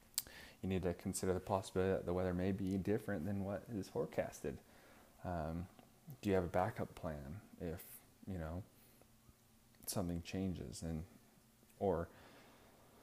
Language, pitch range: English, 85-105 Hz